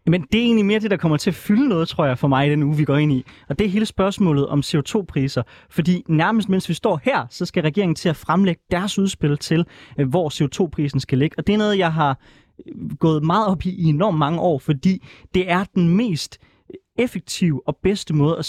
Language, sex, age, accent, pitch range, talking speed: Danish, male, 20-39, native, 145-190 Hz, 235 wpm